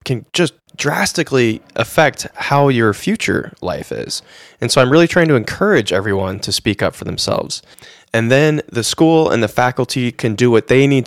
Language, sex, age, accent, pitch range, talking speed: English, male, 20-39, American, 110-155 Hz, 185 wpm